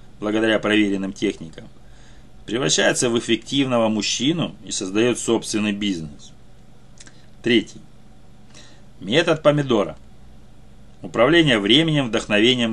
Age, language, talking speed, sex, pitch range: 30-49, Russian, 80 wpm, male, 100-125 Hz